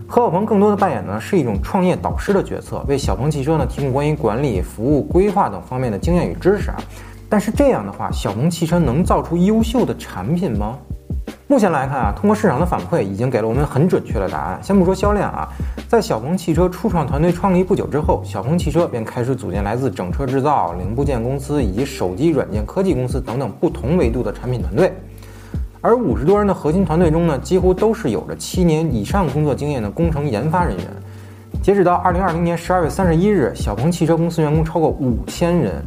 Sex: male